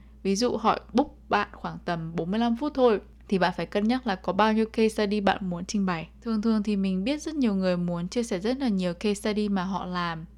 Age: 10-29